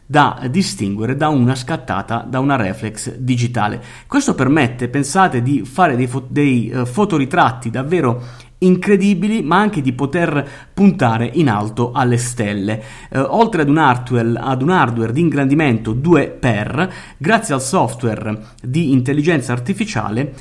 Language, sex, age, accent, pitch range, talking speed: Italian, male, 30-49, native, 120-175 Hz, 140 wpm